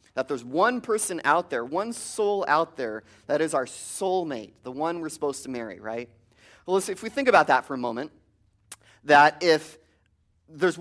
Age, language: 30-49, English